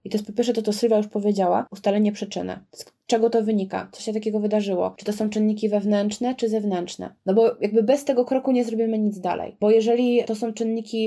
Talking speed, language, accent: 230 wpm, Polish, native